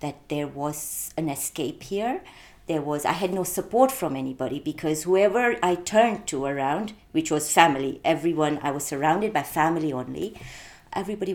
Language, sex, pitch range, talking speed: English, female, 150-200 Hz, 165 wpm